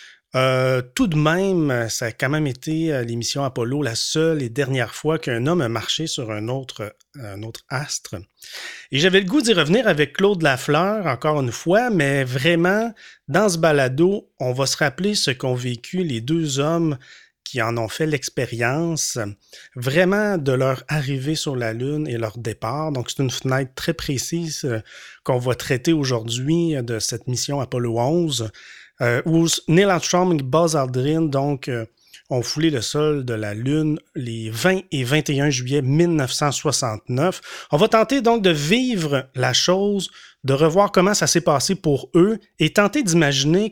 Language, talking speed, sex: French, 165 wpm, male